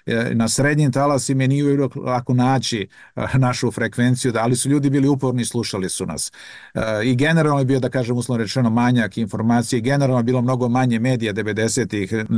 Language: Croatian